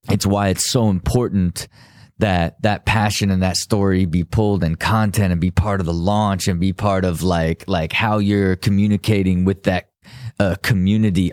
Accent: American